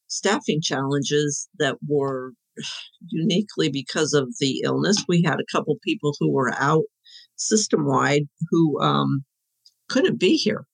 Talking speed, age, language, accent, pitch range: 130 wpm, 50-69, English, American, 140-185 Hz